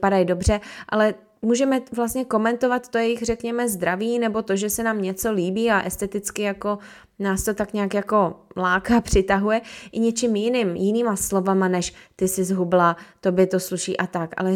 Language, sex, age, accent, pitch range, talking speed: Czech, female, 20-39, native, 185-215 Hz, 175 wpm